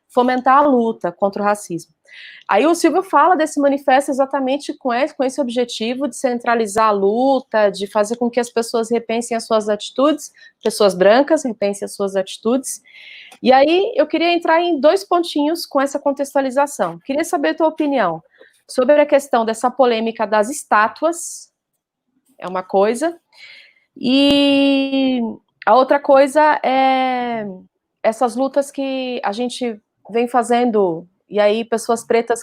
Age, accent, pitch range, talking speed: 30-49, Brazilian, 215-280 Hz, 145 wpm